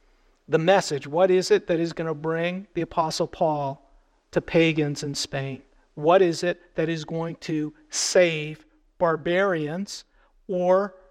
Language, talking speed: English, 145 wpm